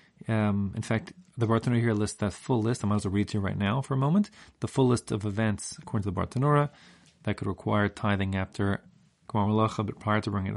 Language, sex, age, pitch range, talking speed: English, male, 30-49, 100-140 Hz, 235 wpm